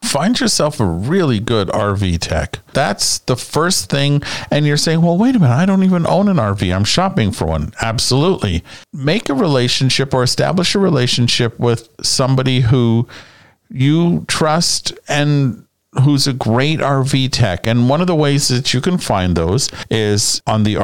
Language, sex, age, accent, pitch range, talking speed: English, male, 50-69, American, 105-145 Hz, 175 wpm